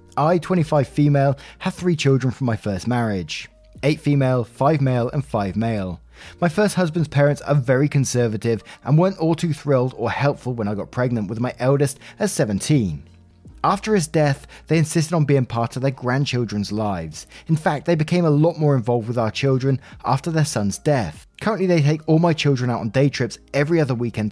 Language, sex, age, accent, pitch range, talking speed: English, male, 20-39, British, 115-155 Hz, 195 wpm